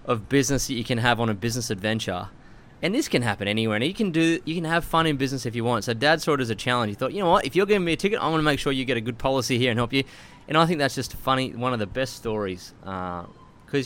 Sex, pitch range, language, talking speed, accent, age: male, 110-140 Hz, English, 310 wpm, Australian, 20-39